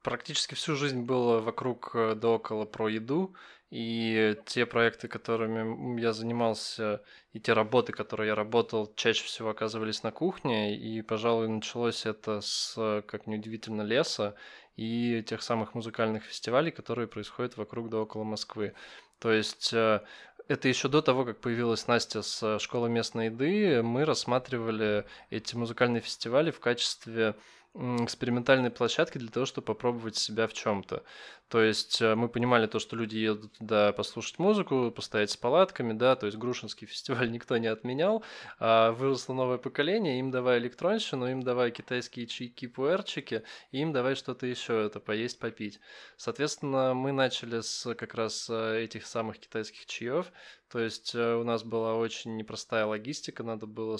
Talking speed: 150 wpm